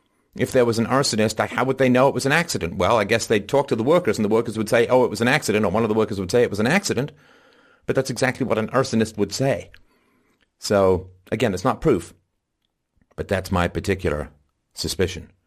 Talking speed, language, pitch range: 235 wpm, English, 95-125 Hz